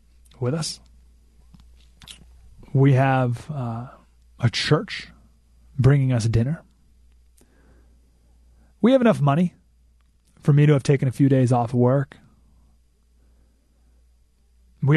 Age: 30-49